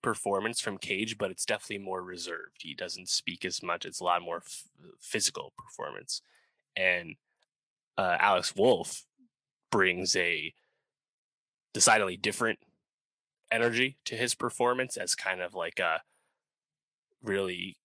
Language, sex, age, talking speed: English, male, 20-39, 125 wpm